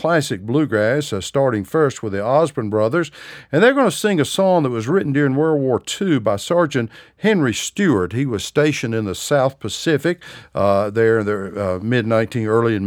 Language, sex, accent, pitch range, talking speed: English, male, American, 110-150 Hz, 200 wpm